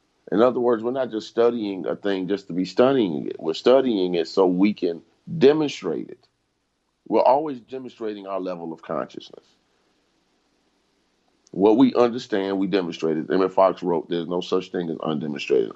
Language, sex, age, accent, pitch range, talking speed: English, male, 50-69, American, 95-115 Hz, 170 wpm